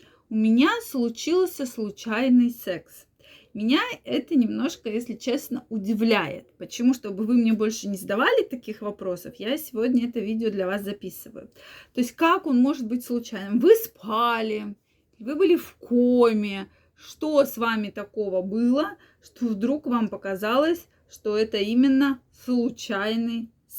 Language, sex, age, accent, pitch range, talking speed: Russian, female, 20-39, native, 210-260 Hz, 135 wpm